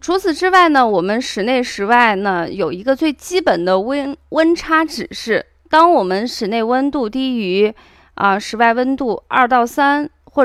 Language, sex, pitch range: Chinese, female, 210-290 Hz